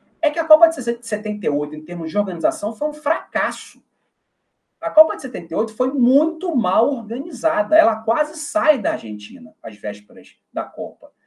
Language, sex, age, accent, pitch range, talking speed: Portuguese, male, 40-59, Brazilian, 210-310 Hz, 160 wpm